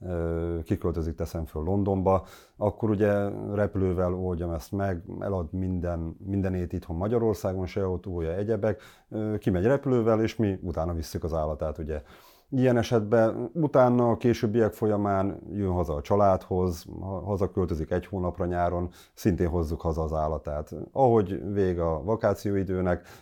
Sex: male